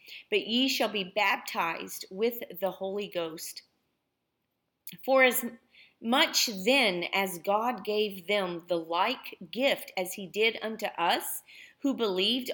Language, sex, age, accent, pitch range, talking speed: English, female, 40-59, American, 180-225 Hz, 130 wpm